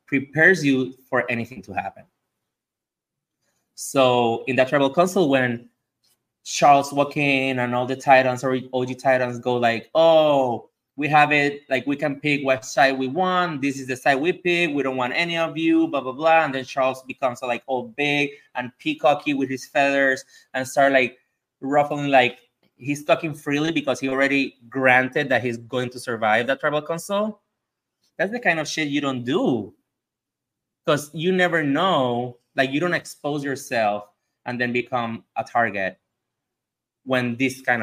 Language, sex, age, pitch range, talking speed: English, male, 20-39, 120-145 Hz, 170 wpm